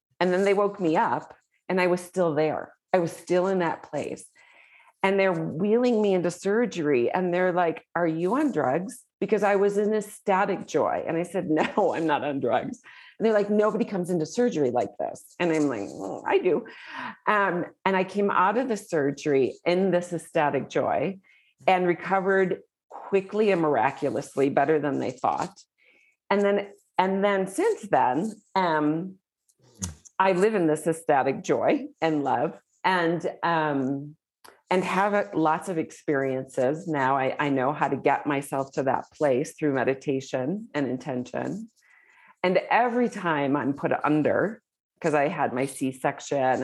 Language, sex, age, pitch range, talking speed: English, female, 40-59, 140-200 Hz, 165 wpm